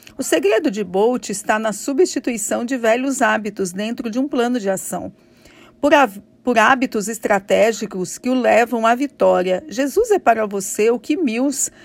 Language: Portuguese